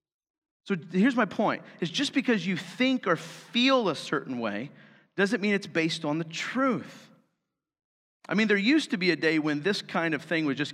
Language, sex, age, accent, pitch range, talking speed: English, male, 40-59, American, 160-250 Hz, 200 wpm